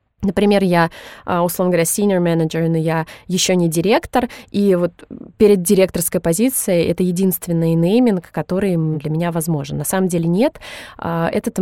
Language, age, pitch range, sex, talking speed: Russian, 20-39, 170-205 Hz, female, 145 wpm